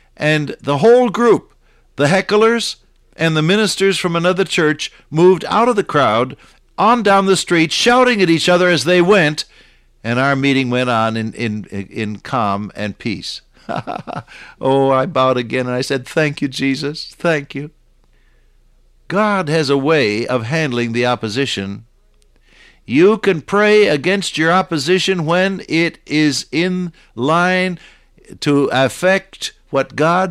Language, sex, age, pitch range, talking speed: English, male, 60-79, 130-185 Hz, 145 wpm